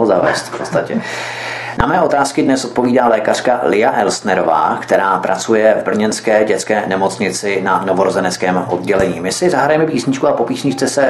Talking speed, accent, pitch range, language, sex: 155 wpm, native, 105-125 Hz, Czech, male